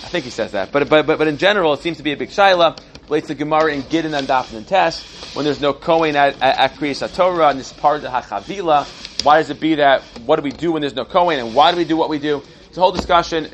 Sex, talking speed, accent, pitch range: male, 290 wpm, American, 130-165 Hz